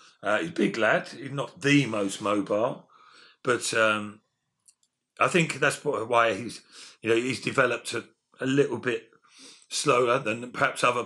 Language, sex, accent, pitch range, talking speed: English, male, British, 110-145 Hz, 155 wpm